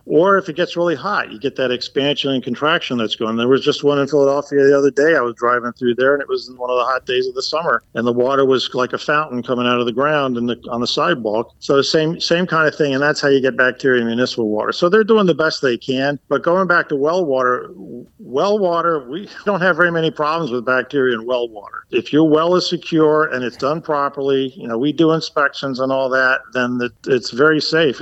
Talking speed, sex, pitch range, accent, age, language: 255 wpm, male, 120-150 Hz, American, 50-69, English